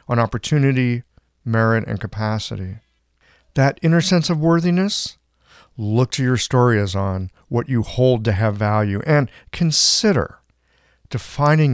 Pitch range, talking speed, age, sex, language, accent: 105-145 Hz, 130 wpm, 40-59, male, English, American